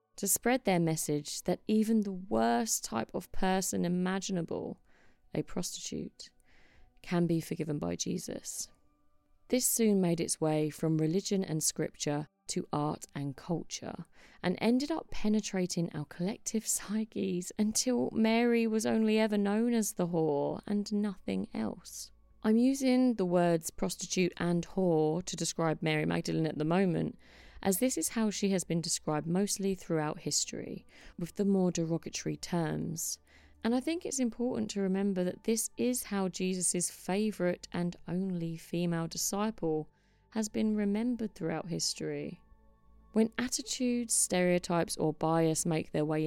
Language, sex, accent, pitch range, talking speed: English, female, British, 155-210 Hz, 145 wpm